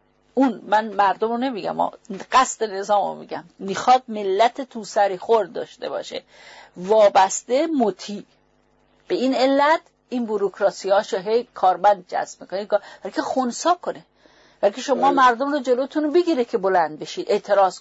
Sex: female